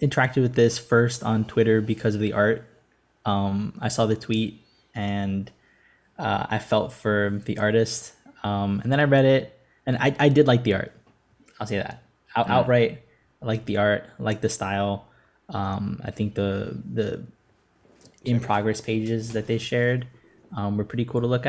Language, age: English, 10-29